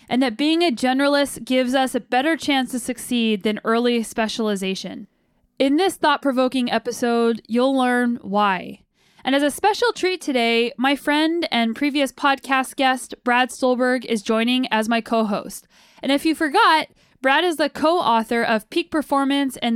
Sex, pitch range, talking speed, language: female, 230-280 Hz, 160 wpm, English